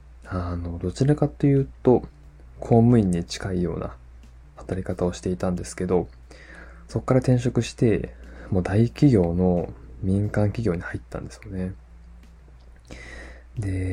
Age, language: 20-39, Japanese